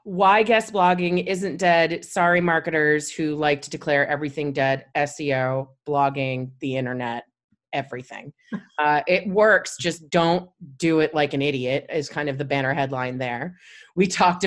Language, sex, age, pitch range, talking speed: English, female, 30-49, 150-195 Hz, 155 wpm